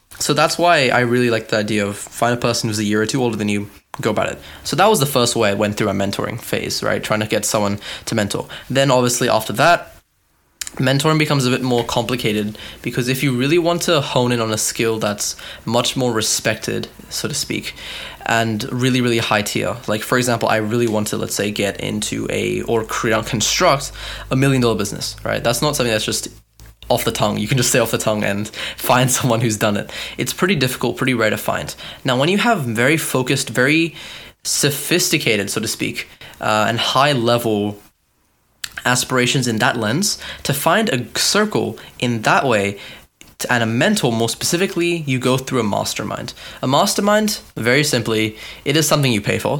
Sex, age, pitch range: male, 10-29, 110-135 Hz